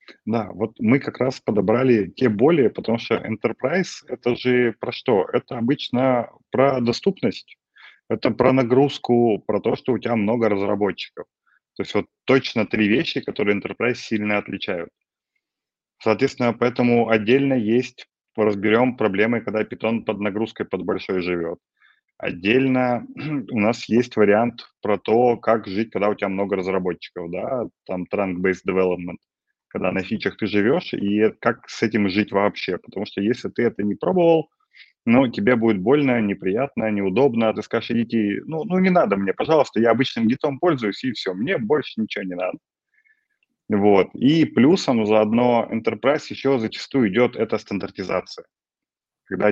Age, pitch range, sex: 20-39, 105-125 Hz, male